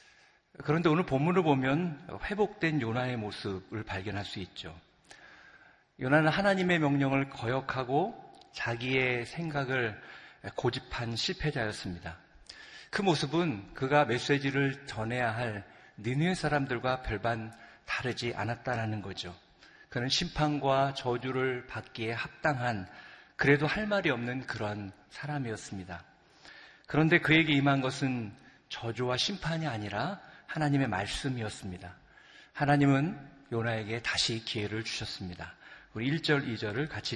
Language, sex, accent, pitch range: Korean, male, native, 105-145 Hz